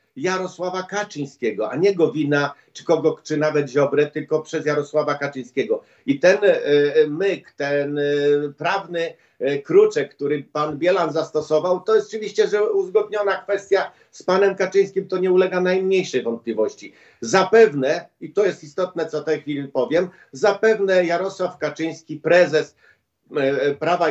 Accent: native